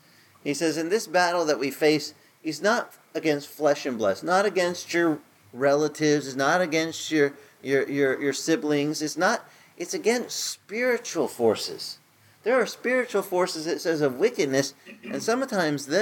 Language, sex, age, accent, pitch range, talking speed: English, male, 40-59, American, 130-200 Hz, 160 wpm